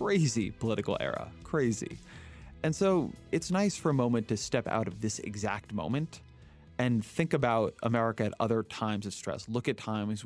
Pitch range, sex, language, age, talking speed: 105-130 Hz, male, English, 20-39, 175 wpm